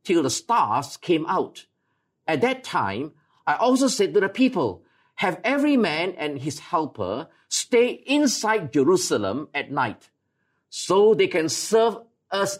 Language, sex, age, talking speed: English, male, 50-69, 145 wpm